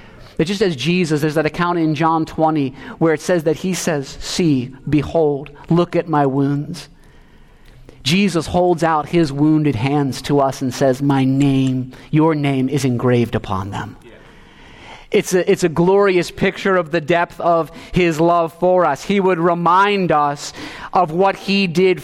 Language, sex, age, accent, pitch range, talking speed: English, male, 30-49, American, 160-205 Hz, 170 wpm